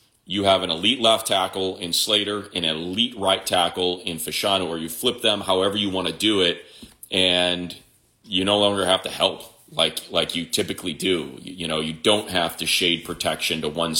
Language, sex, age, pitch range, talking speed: English, male, 30-49, 80-95 Hz, 195 wpm